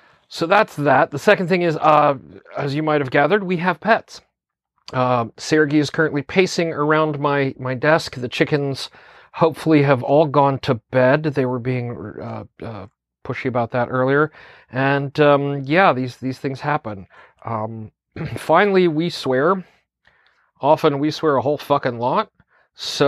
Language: English